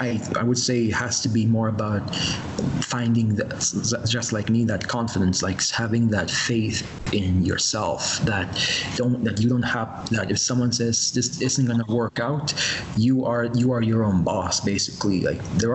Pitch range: 105-125 Hz